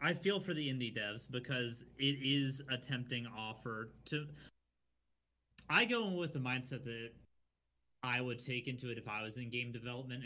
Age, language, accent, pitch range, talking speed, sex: 30-49, English, American, 110-135 Hz, 180 wpm, male